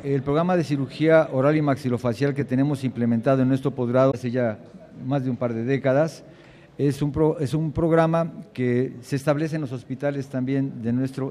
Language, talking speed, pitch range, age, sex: Spanish, 190 wpm, 130-155 Hz, 50-69, male